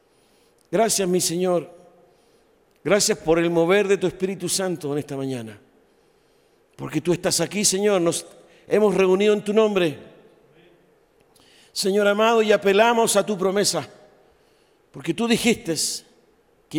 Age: 50-69